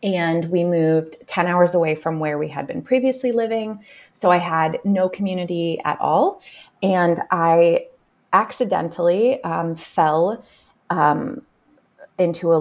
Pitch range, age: 160-210 Hz, 20-39